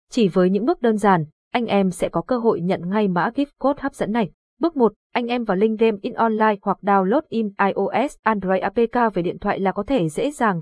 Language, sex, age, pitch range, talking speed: Vietnamese, female, 20-39, 190-240 Hz, 245 wpm